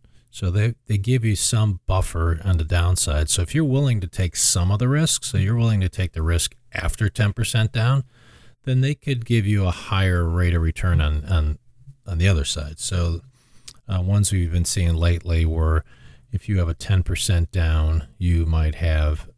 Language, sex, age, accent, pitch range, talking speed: English, male, 40-59, American, 85-115 Hz, 200 wpm